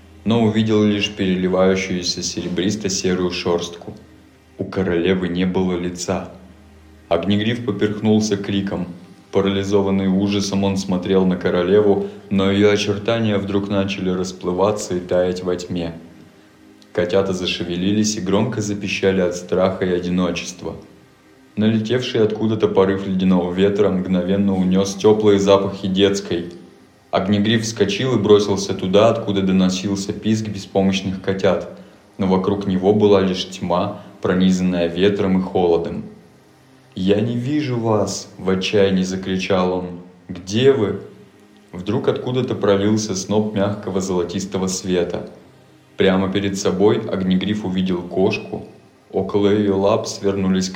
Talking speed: 115 wpm